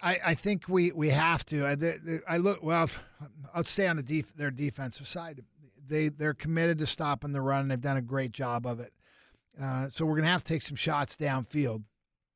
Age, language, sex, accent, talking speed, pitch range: 50-69, English, male, American, 210 wpm, 135-165 Hz